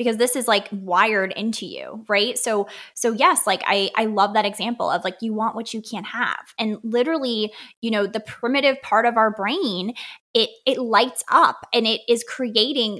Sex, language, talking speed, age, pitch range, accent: female, English, 200 wpm, 20-39, 210-275 Hz, American